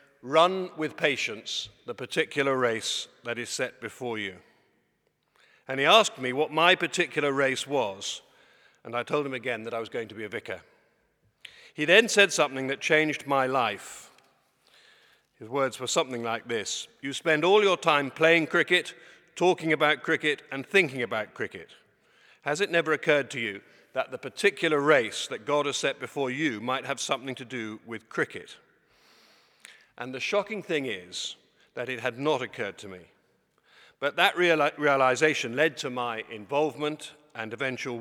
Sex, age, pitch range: male, 50-69, 115-150 Hz